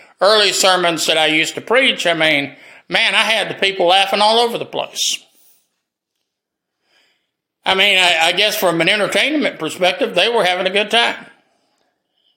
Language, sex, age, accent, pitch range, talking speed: English, male, 50-69, American, 170-215 Hz, 165 wpm